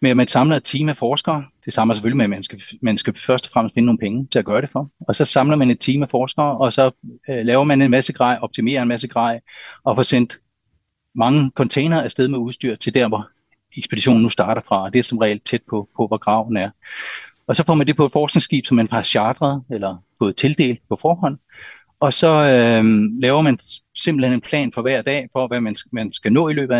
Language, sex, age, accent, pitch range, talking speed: Danish, male, 40-59, native, 110-135 Hz, 250 wpm